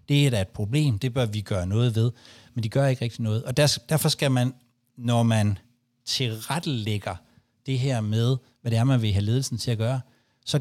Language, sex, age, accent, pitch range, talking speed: Danish, male, 60-79, native, 115-140 Hz, 215 wpm